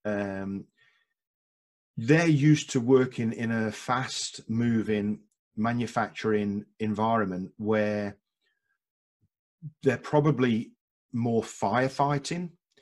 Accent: British